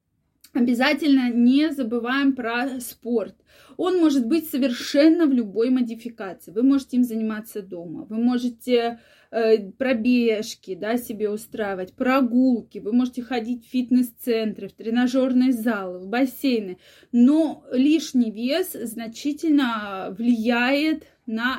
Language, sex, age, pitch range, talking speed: Russian, female, 20-39, 225-275 Hz, 110 wpm